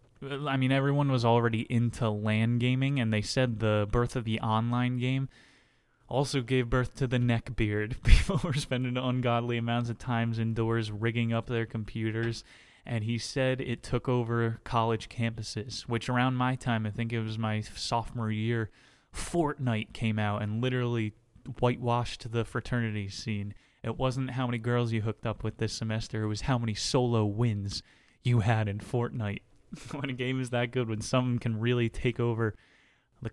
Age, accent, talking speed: 20-39, American, 175 wpm